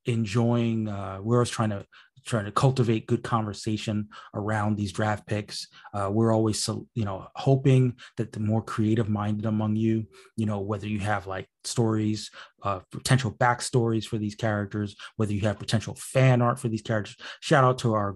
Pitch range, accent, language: 100-115 Hz, American, English